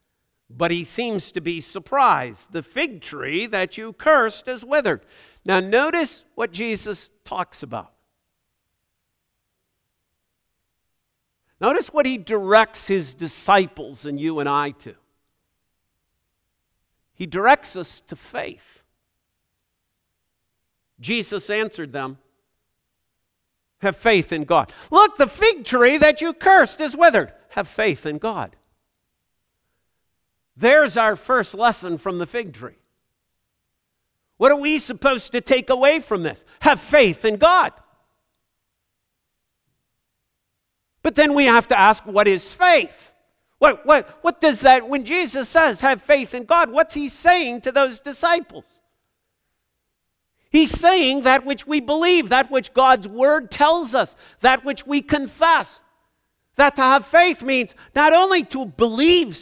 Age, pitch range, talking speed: 50-69, 180-295 Hz, 130 wpm